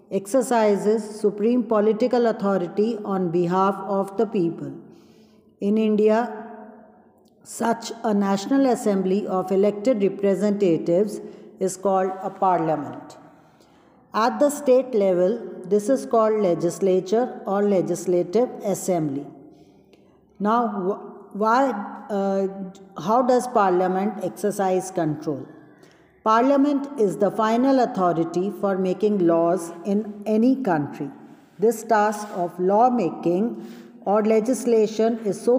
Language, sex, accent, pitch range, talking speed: English, female, Indian, 190-225 Hz, 105 wpm